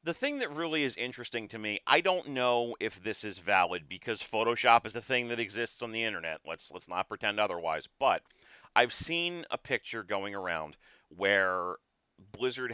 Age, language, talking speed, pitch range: 30-49, English, 185 wpm, 100-130 Hz